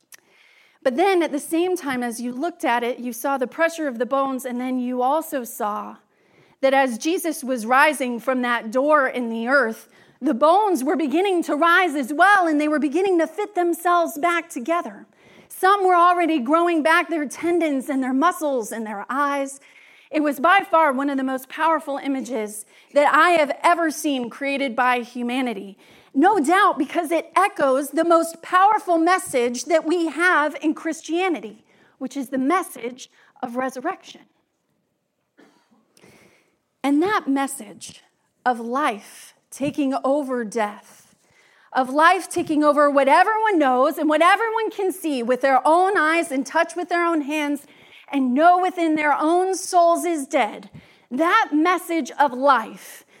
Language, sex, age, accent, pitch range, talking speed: English, female, 40-59, American, 265-340 Hz, 160 wpm